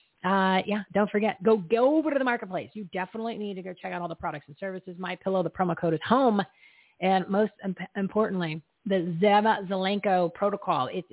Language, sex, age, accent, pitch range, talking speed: English, female, 40-59, American, 180-215 Hz, 205 wpm